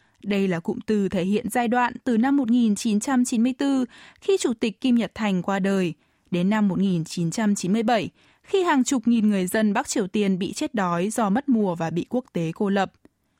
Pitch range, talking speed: 195-255 Hz, 195 wpm